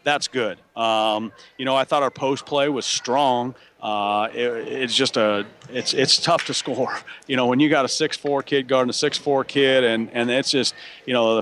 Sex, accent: male, American